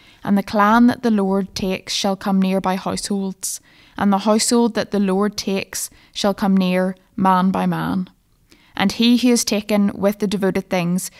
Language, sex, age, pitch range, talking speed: English, female, 20-39, 185-210 Hz, 180 wpm